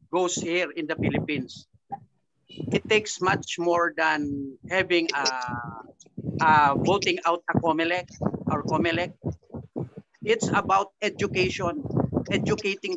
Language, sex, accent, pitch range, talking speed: English, male, Filipino, 145-190 Hz, 105 wpm